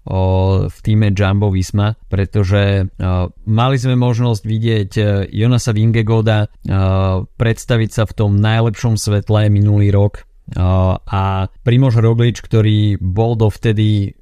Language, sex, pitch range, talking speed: Slovak, male, 95-115 Hz, 120 wpm